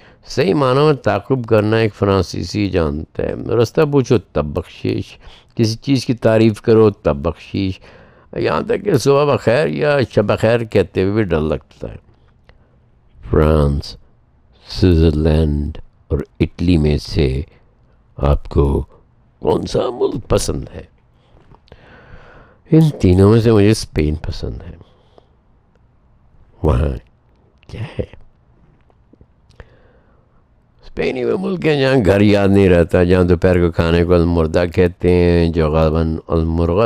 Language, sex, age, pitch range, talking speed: Urdu, male, 60-79, 85-110 Hz, 125 wpm